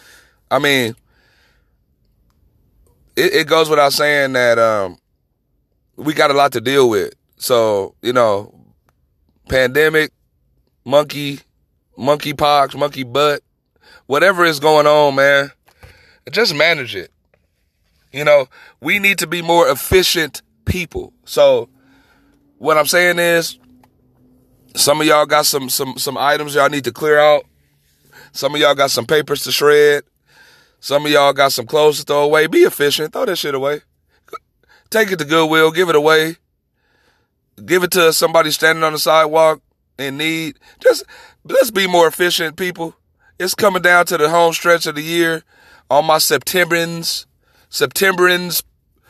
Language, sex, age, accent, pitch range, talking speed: English, male, 30-49, American, 140-170 Hz, 145 wpm